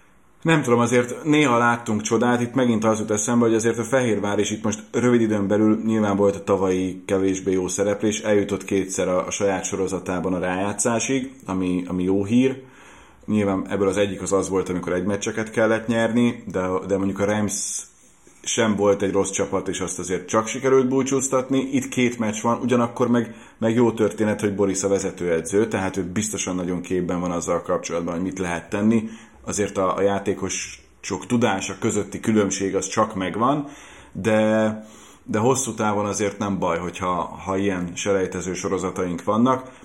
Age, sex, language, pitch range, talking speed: 30-49, male, Hungarian, 95-115 Hz, 175 wpm